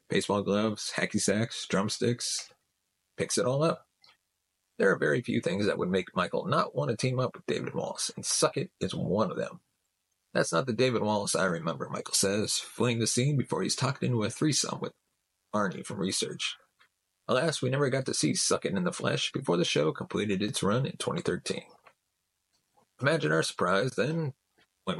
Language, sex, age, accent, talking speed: English, male, 30-49, American, 190 wpm